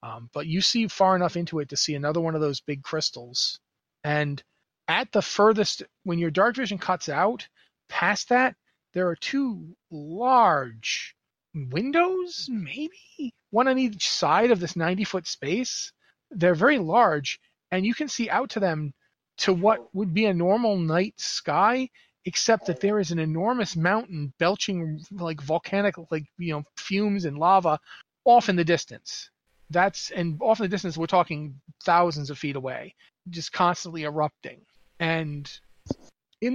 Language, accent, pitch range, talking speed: English, American, 150-200 Hz, 160 wpm